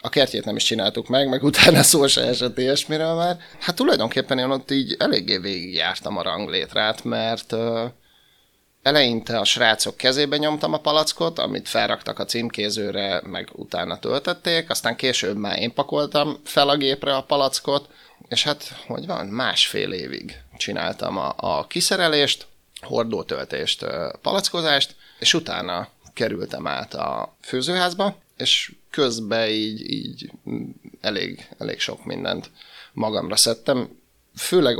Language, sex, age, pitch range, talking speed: Hungarian, male, 30-49, 115-150 Hz, 130 wpm